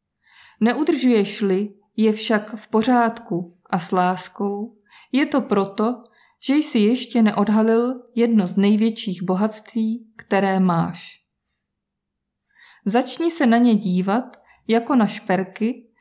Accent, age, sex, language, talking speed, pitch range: native, 20-39, female, Czech, 105 wpm, 200-240 Hz